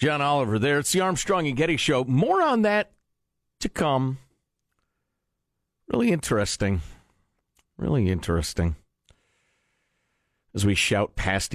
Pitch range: 80-115 Hz